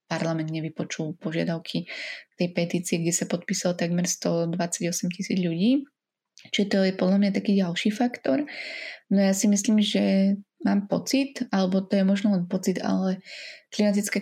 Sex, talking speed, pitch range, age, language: female, 150 wpm, 180-210 Hz, 20-39, Slovak